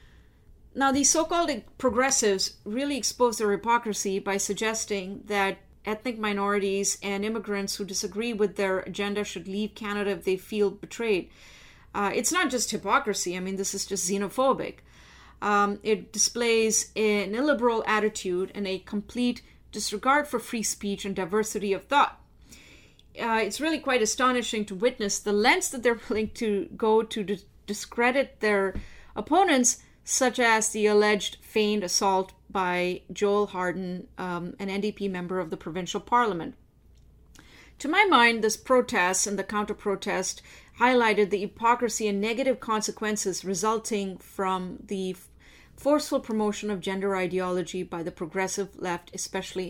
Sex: female